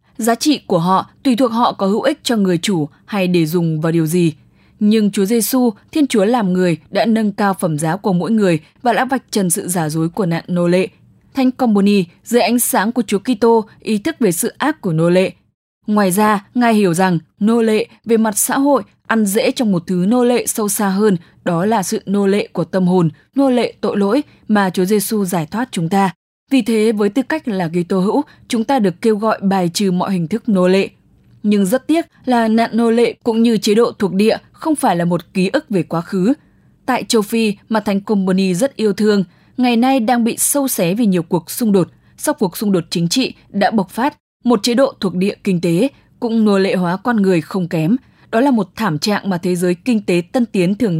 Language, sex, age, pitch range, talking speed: English, female, 10-29, 185-235 Hz, 240 wpm